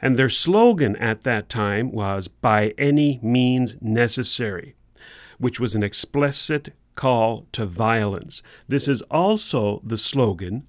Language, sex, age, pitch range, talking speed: English, male, 40-59, 105-135 Hz, 130 wpm